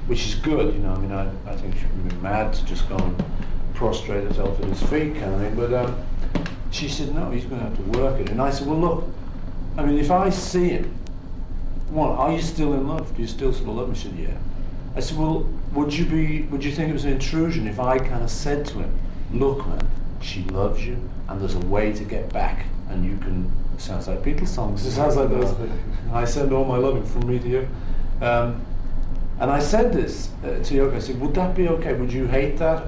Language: English